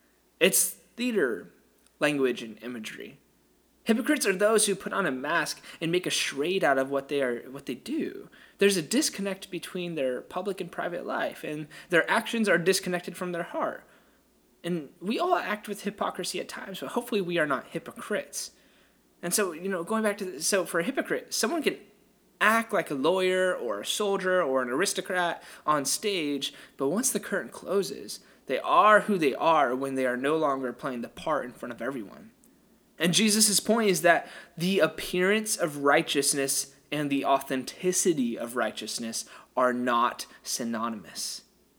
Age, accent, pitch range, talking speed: 20-39, American, 145-205 Hz, 170 wpm